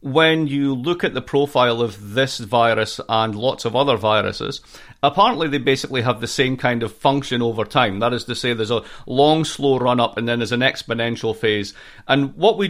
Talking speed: 210 wpm